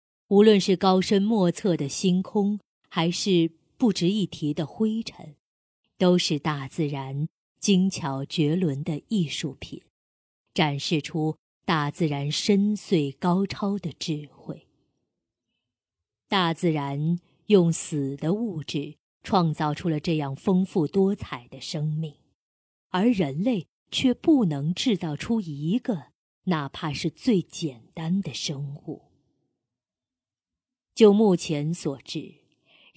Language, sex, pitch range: Chinese, female, 145-190 Hz